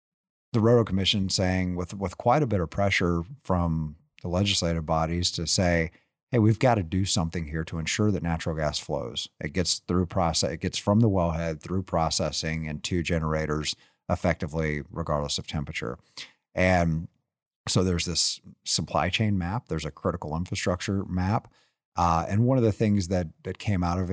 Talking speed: 175 wpm